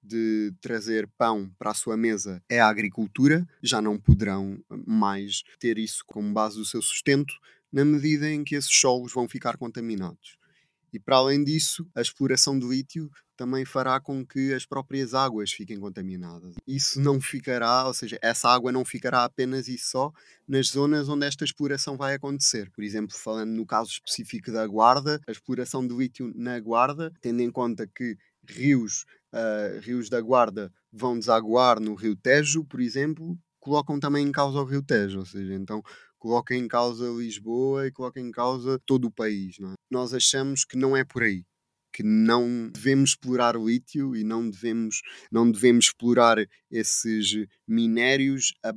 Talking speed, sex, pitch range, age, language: 175 wpm, male, 110-135 Hz, 20-39, Portuguese